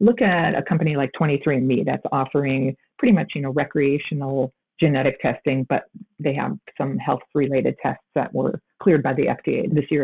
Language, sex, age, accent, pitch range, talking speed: English, female, 40-59, American, 150-190 Hz, 165 wpm